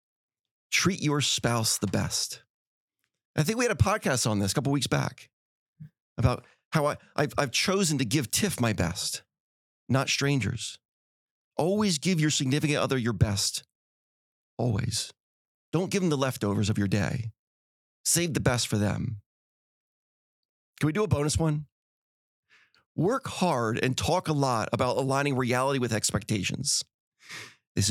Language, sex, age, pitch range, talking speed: English, male, 30-49, 115-155 Hz, 145 wpm